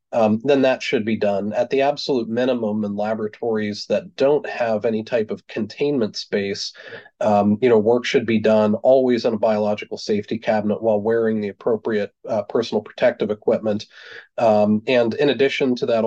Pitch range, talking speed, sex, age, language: 105-120 Hz, 175 wpm, male, 30-49, English